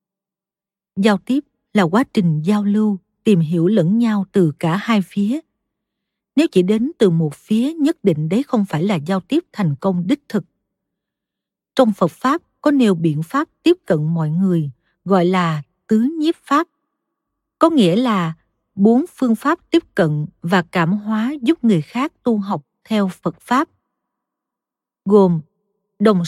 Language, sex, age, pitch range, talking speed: Vietnamese, female, 50-69, 180-245 Hz, 160 wpm